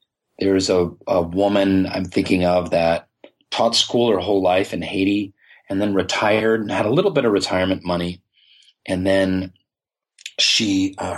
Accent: American